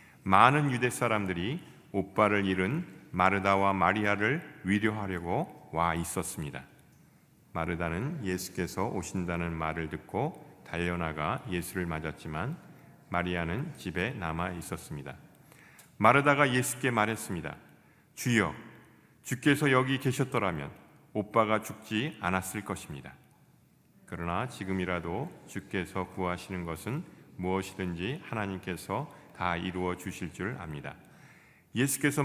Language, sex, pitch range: Korean, male, 90-120 Hz